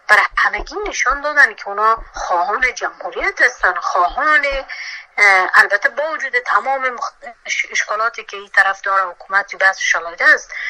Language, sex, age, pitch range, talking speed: English, female, 30-49, 190-280 Hz, 140 wpm